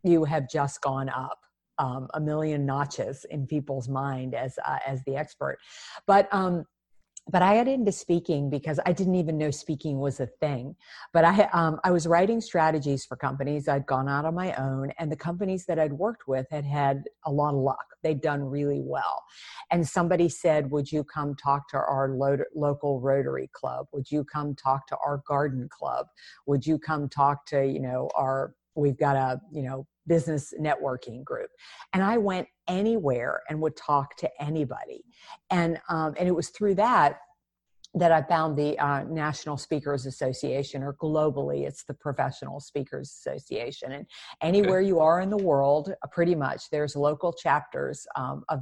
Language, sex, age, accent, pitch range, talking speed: English, female, 50-69, American, 140-170 Hz, 180 wpm